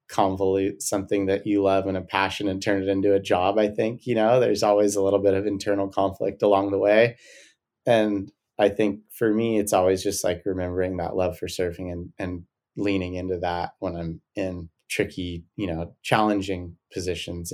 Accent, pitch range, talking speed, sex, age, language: American, 90-100 Hz, 190 wpm, male, 30-49, English